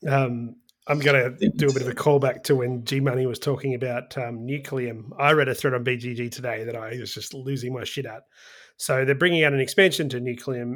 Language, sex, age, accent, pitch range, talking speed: English, male, 30-49, Australian, 125-145 Hz, 230 wpm